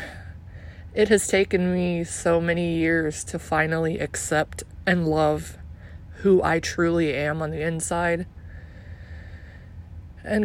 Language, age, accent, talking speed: English, 20-39, American, 115 wpm